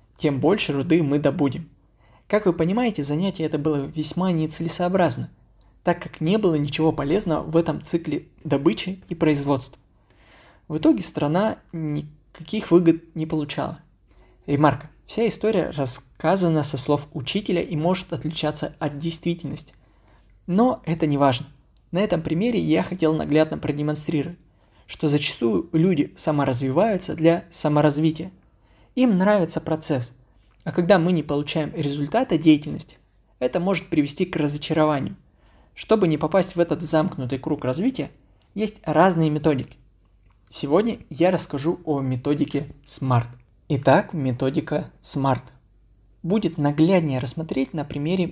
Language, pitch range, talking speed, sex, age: Russian, 140-170 Hz, 125 wpm, male, 20-39